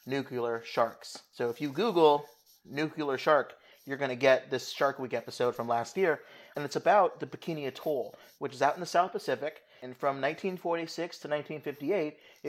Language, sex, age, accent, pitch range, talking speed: English, male, 30-49, American, 125-155 Hz, 180 wpm